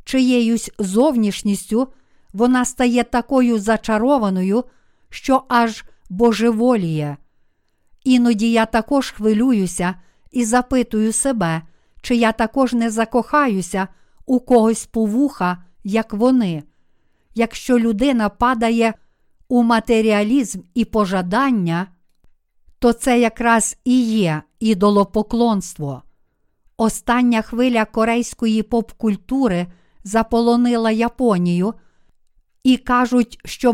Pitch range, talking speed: 210-245 Hz, 85 wpm